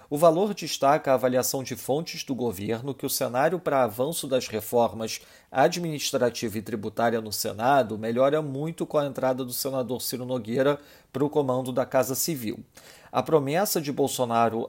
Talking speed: 165 wpm